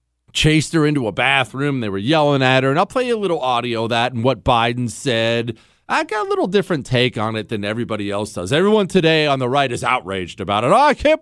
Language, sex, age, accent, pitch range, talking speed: English, male, 40-59, American, 105-160 Hz, 255 wpm